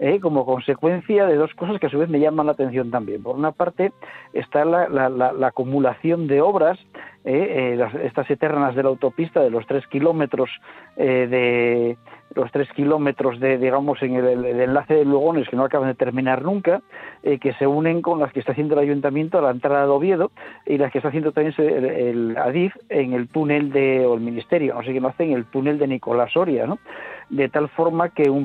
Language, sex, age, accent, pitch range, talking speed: Spanish, male, 50-69, Spanish, 130-155 Hz, 225 wpm